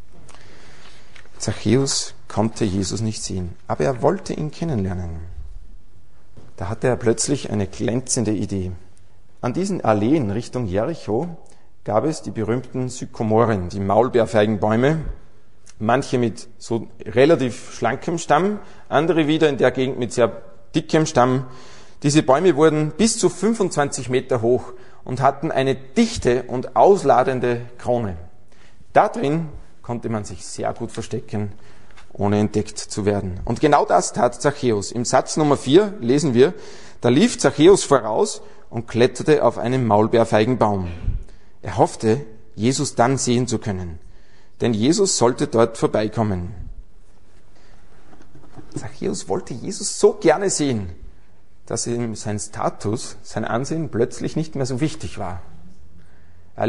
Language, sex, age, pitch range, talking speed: German, male, 40-59, 105-135 Hz, 130 wpm